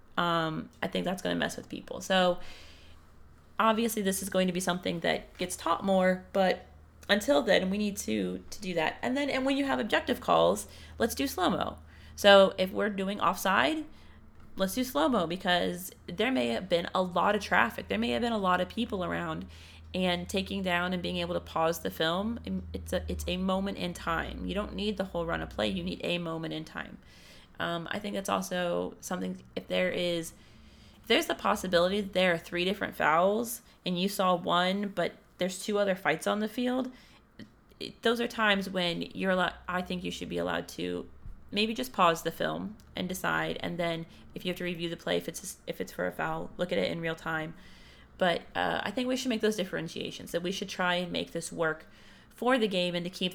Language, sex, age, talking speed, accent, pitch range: English, female, 30-49, 215 wpm, American, 135-200 Hz